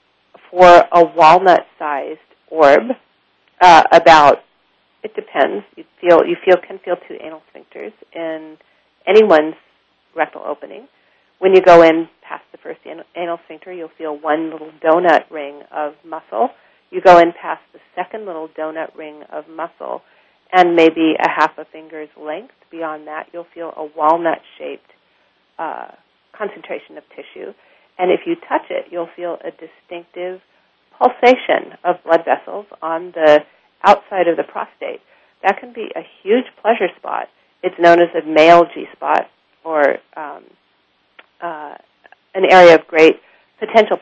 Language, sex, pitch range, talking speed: English, female, 155-190 Hz, 145 wpm